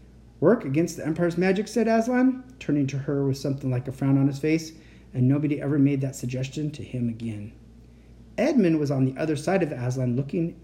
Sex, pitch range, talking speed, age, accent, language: male, 125-160 Hz, 205 wpm, 40-59, American, English